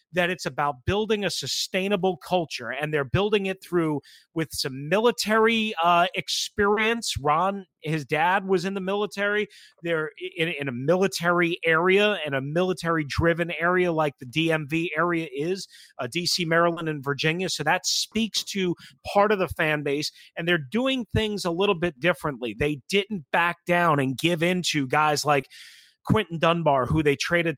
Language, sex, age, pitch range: English, male, 30-49, 150-190 Hz